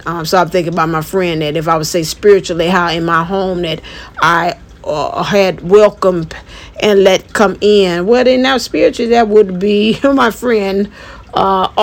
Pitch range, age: 175-205 Hz, 50-69